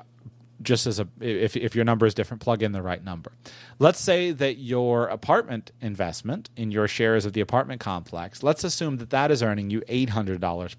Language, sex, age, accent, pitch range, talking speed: English, male, 30-49, American, 110-130 Hz, 195 wpm